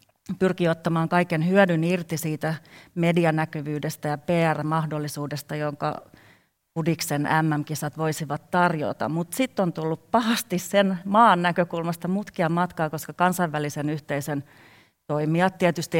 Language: Finnish